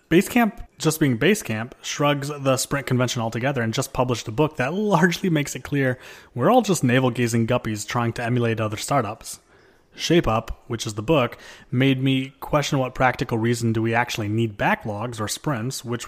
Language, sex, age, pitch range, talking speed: English, male, 30-49, 110-145 Hz, 185 wpm